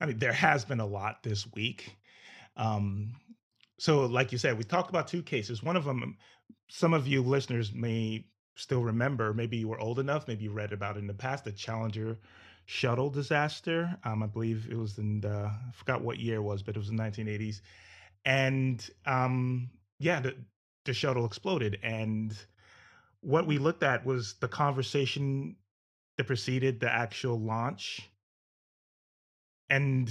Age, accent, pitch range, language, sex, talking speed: 30-49, American, 110-130 Hz, English, male, 165 wpm